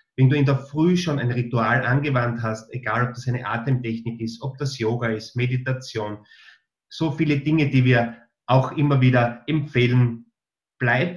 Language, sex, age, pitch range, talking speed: German, male, 30-49, 115-140 Hz, 165 wpm